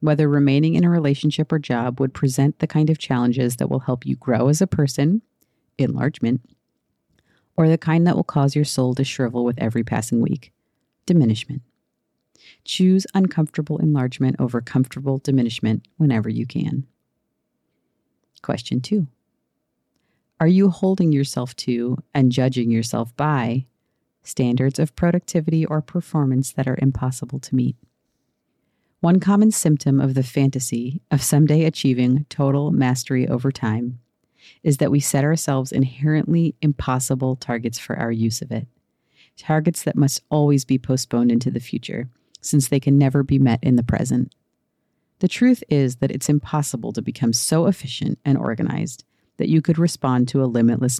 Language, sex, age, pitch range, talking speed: English, female, 40-59, 125-155 Hz, 155 wpm